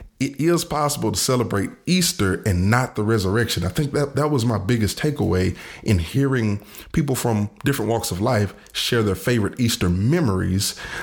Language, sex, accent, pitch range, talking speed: English, male, American, 90-115 Hz, 170 wpm